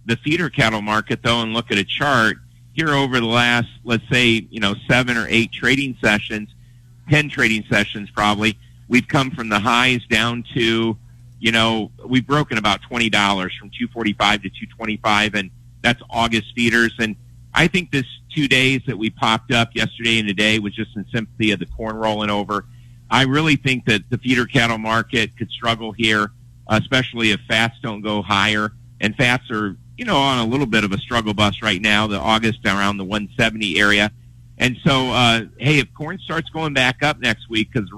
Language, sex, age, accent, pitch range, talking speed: English, male, 50-69, American, 105-120 Hz, 190 wpm